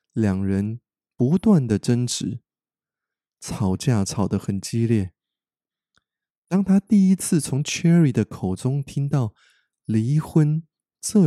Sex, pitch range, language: male, 105-140 Hz, Chinese